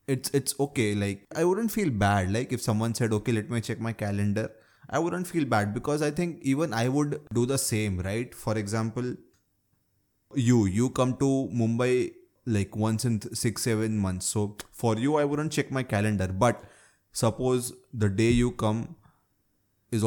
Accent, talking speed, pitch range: Indian, 180 wpm, 100-130 Hz